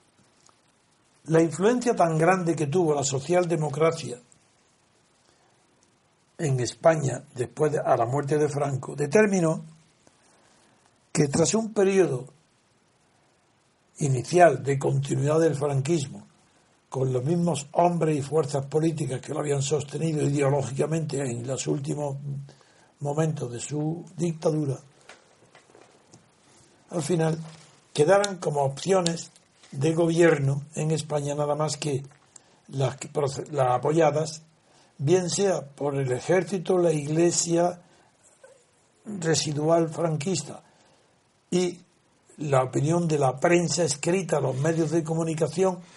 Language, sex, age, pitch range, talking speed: Spanish, male, 60-79, 145-175 Hz, 105 wpm